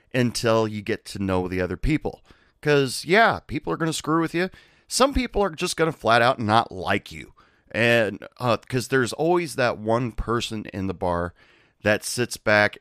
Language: English